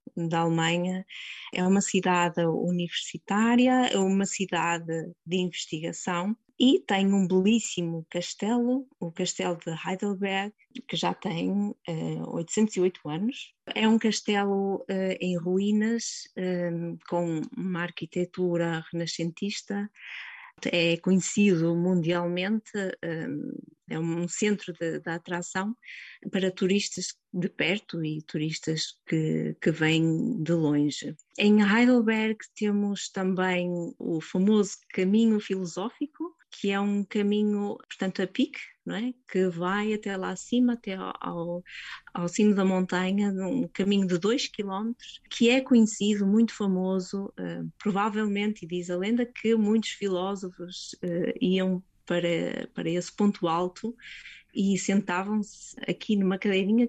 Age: 20-39